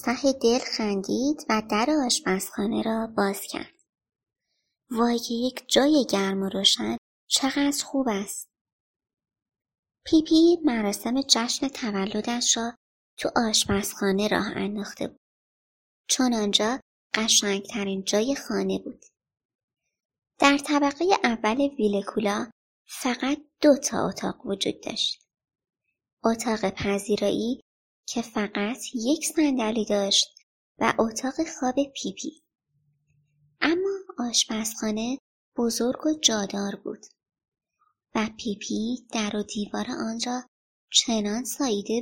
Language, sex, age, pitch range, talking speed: Persian, male, 30-49, 210-275 Hz, 105 wpm